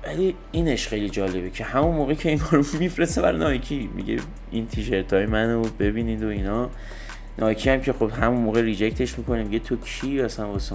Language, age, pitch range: Persian, 30-49, 105-140 Hz